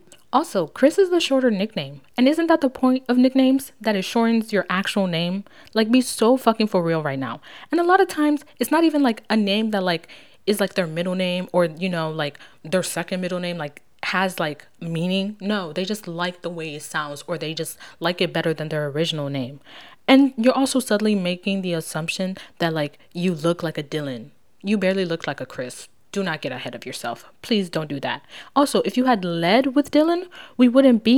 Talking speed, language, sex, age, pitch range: 220 wpm, English, female, 20-39, 170-255 Hz